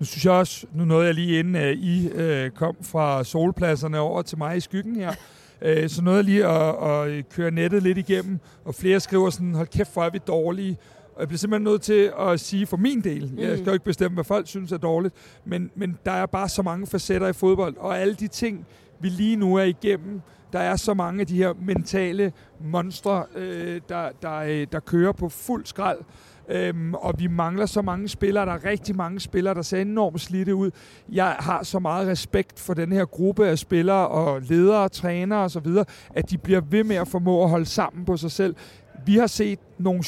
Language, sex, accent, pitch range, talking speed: Danish, male, native, 165-195 Hz, 220 wpm